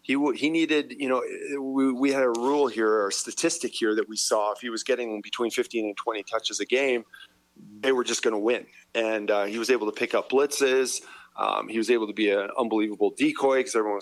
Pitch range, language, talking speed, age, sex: 105-130 Hz, English, 225 wpm, 30-49, male